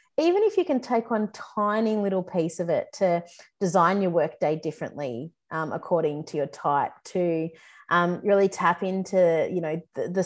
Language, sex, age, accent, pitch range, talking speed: English, female, 30-49, Australian, 160-205 Hz, 175 wpm